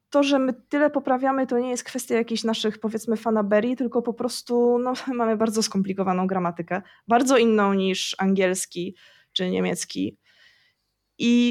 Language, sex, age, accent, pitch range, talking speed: Polish, female, 20-39, native, 215-255 Hz, 145 wpm